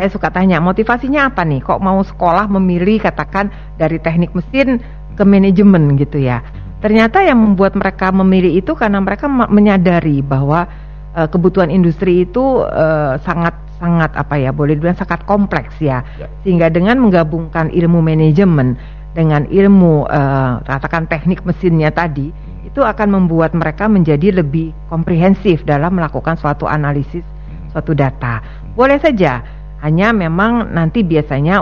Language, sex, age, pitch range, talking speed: Indonesian, female, 50-69, 150-185 Hz, 140 wpm